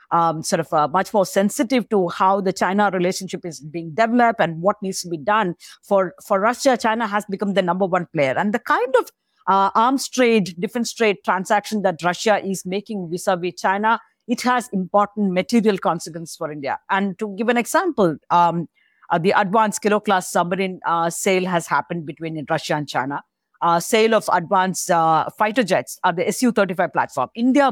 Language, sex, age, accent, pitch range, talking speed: English, female, 50-69, Indian, 180-230 Hz, 185 wpm